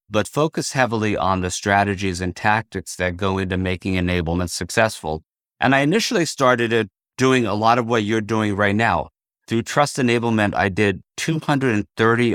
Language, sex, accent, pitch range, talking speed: English, male, American, 95-115 Hz, 160 wpm